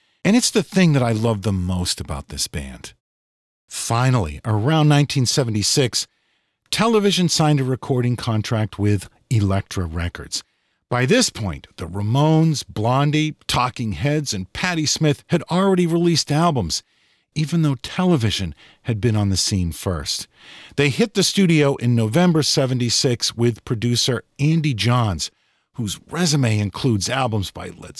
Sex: male